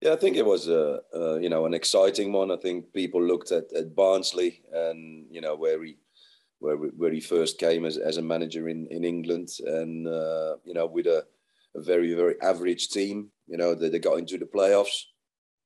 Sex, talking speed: male, 215 wpm